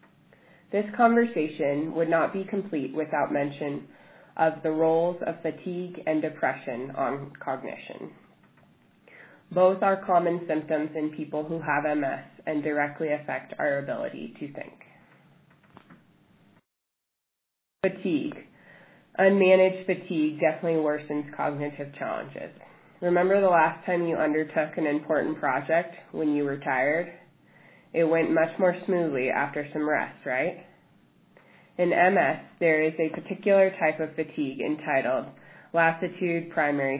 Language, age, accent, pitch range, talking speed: English, 20-39, American, 150-175 Hz, 120 wpm